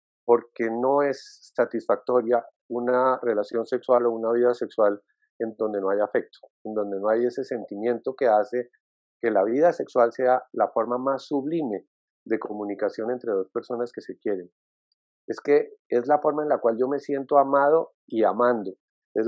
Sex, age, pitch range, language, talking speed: male, 40-59, 110-140 Hz, Spanish, 175 wpm